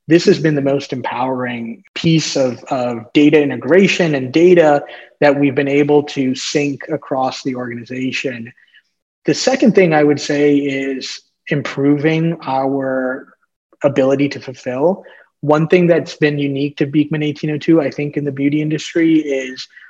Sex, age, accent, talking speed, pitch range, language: male, 30-49, American, 150 wpm, 140-165 Hz, English